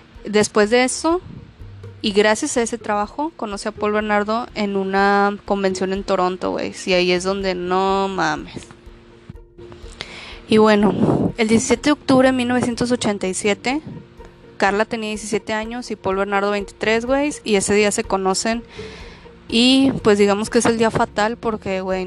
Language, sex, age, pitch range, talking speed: Spanish, female, 20-39, 195-245 Hz, 150 wpm